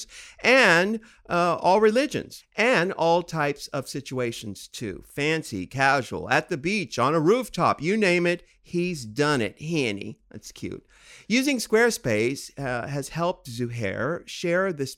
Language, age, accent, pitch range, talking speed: English, 50-69, American, 120-175 Hz, 150 wpm